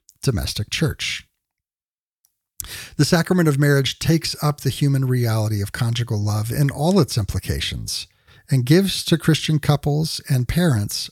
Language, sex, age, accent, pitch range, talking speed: English, male, 50-69, American, 120-160 Hz, 135 wpm